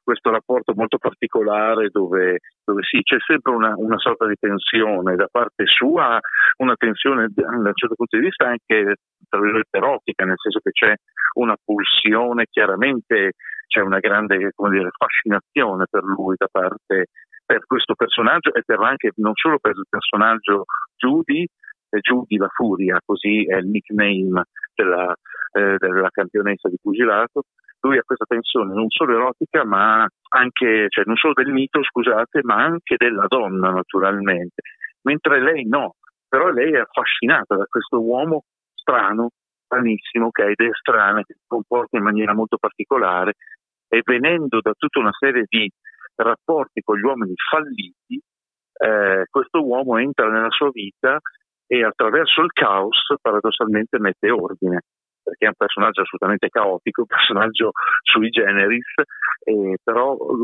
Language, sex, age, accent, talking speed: Italian, male, 40-59, native, 150 wpm